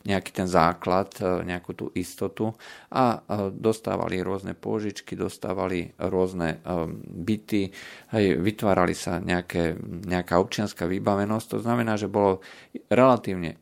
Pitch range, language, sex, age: 90-105 Hz, Slovak, male, 40-59